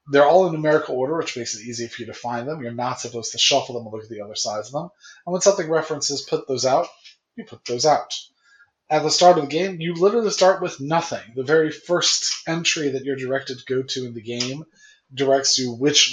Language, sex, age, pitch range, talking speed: English, male, 20-39, 125-165 Hz, 245 wpm